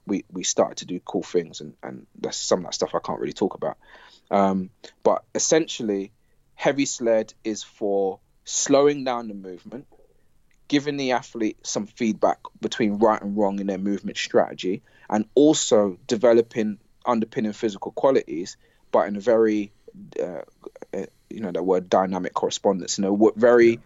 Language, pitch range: English, 100-120 Hz